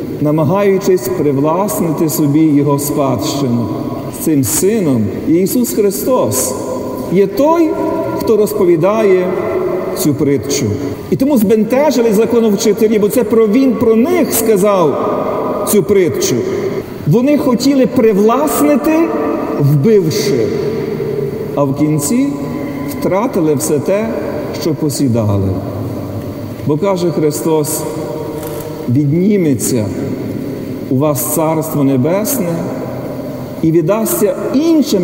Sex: male